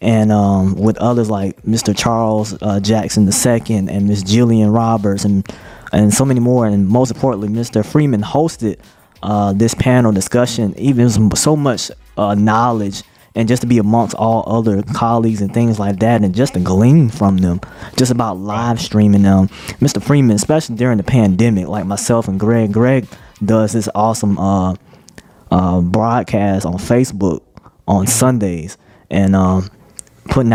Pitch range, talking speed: 100-120 Hz, 160 wpm